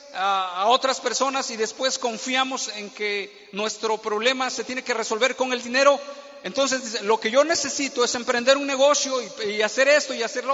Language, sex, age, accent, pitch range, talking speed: Spanish, male, 40-59, Mexican, 200-280 Hz, 190 wpm